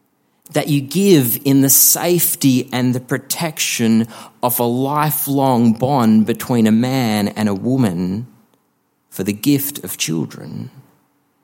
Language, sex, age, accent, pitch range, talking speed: English, male, 40-59, Australian, 110-135 Hz, 125 wpm